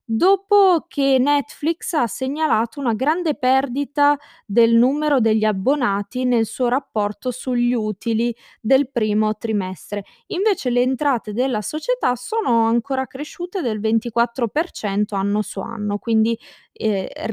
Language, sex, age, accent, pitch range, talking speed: Italian, female, 20-39, native, 205-250 Hz, 120 wpm